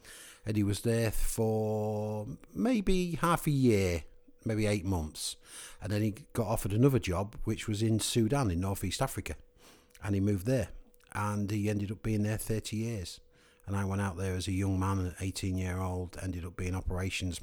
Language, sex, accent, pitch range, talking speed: English, male, British, 90-105 Hz, 190 wpm